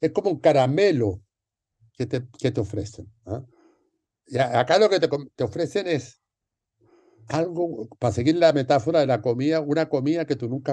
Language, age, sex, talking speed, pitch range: Spanish, 60-79, male, 175 wpm, 100-140 Hz